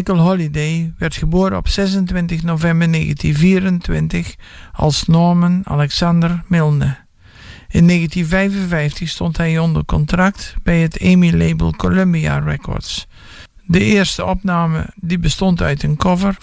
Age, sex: 60-79, male